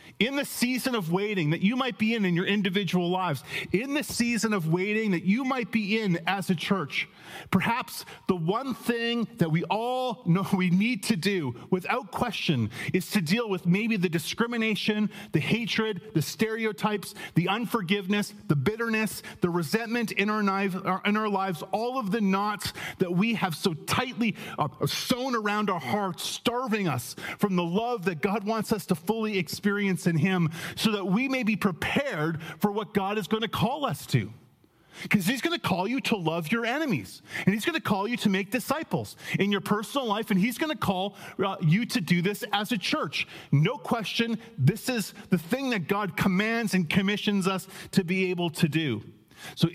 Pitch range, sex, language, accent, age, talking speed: 180-225 Hz, male, English, American, 30-49, 190 wpm